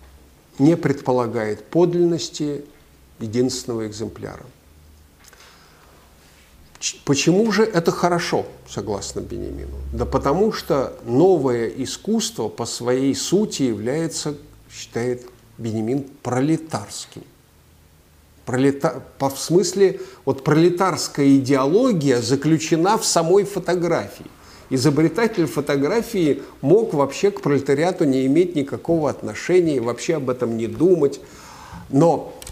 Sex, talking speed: male, 90 wpm